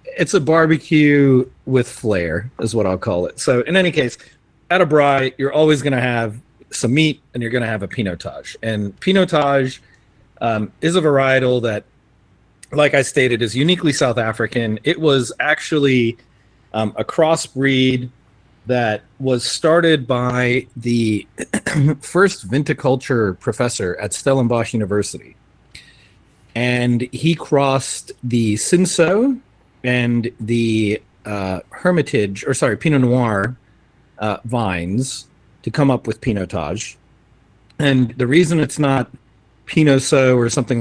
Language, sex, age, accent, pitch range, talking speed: English, male, 40-59, American, 110-140 Hz, 130 wpm